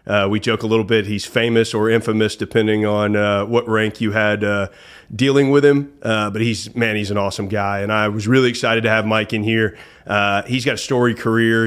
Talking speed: 230 wpm